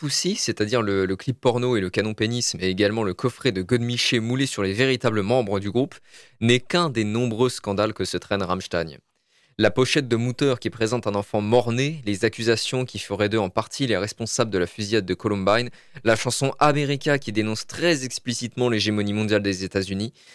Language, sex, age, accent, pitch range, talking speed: French, male, 20-39, French, 100-125 Hz, 200 wpm